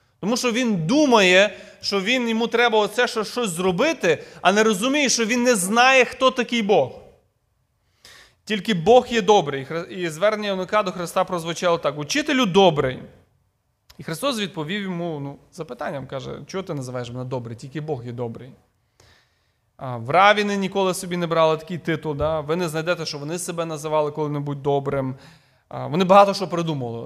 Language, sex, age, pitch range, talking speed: Ukrainian, male, 30-49, 150-205 Hz, 160 wpm